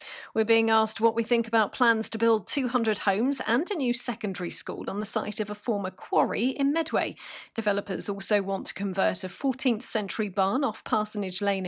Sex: female